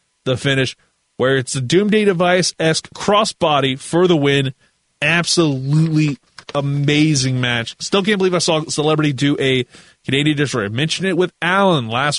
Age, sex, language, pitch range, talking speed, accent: 20-39, male, English, 130-165 Hz, 155 wpm, American